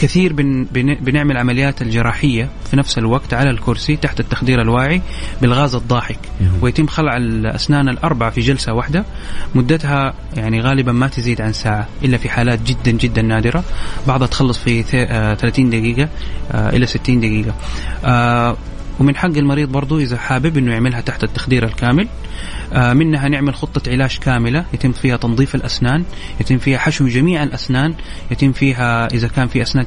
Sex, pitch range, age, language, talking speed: male, 115-140 Hz, 30-49, English, 150 wpm